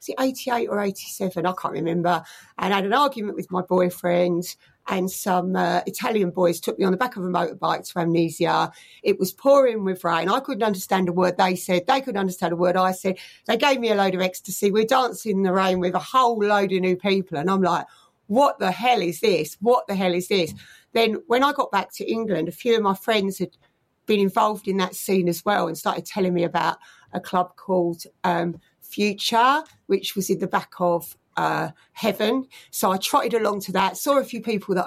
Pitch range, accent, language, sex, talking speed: 180-220 Hz, British, English, female, 225 wpm